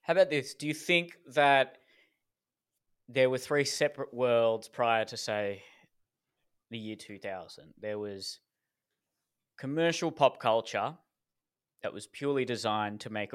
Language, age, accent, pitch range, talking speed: English, 20-39, Australian, 115-140 Hz, 130 wpm